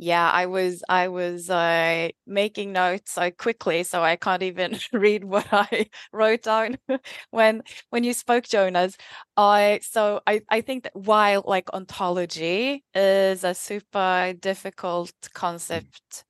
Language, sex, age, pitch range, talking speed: English, female, 20-39, 180-220 Hz, 145 wpm